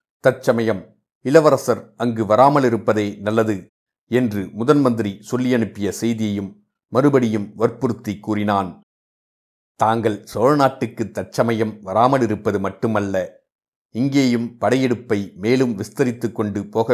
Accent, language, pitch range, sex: native, Tamil, 105-125 Hz, male